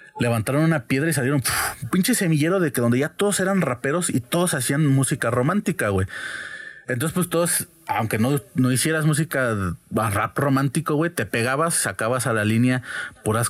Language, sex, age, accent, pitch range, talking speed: Spanish, male, 30-49, Mexican, 105-145 Hz, 180 wpm